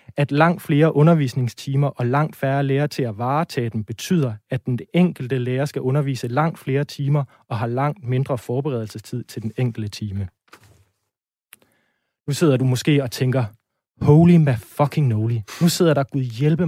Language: Danish